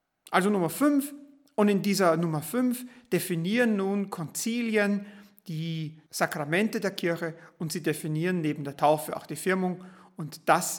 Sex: male